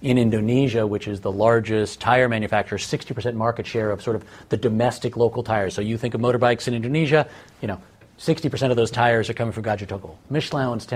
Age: 40-59